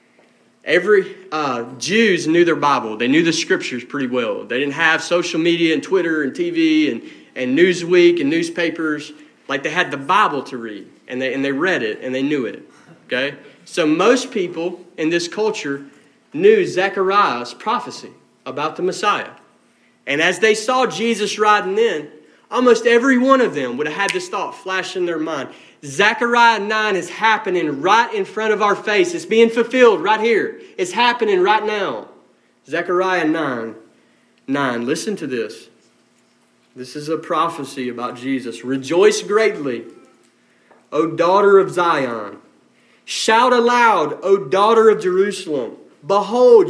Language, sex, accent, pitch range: English, male, American, 160-260 Hz